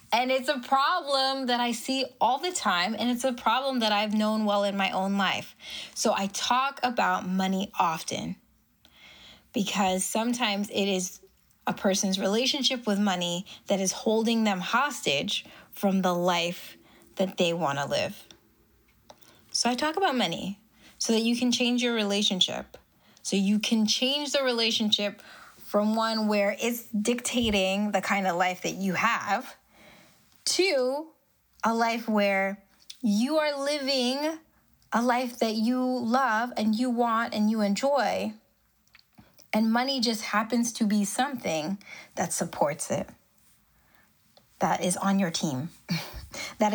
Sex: female